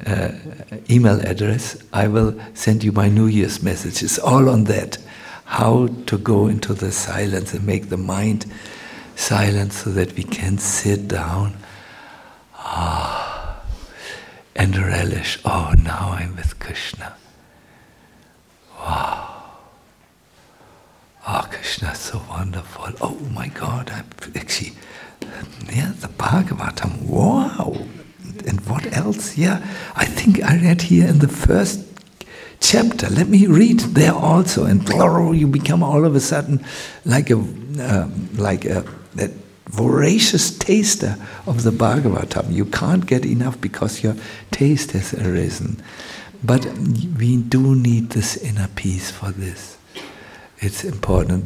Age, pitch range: 60-79, 100-150 Hz